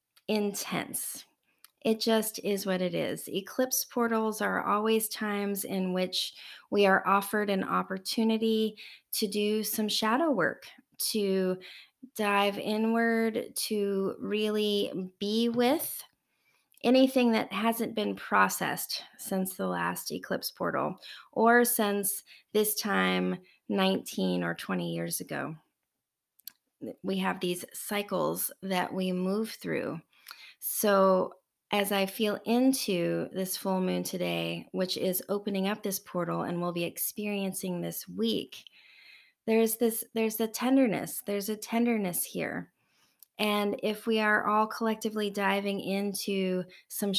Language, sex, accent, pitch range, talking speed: English, female, American, 185-220 Hz, 125 wpm